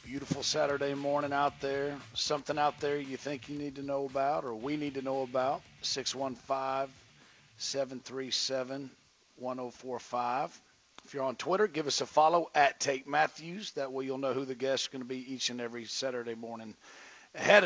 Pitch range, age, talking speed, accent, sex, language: 130-150 Hz, 40-59, 170 wpm, American, male, English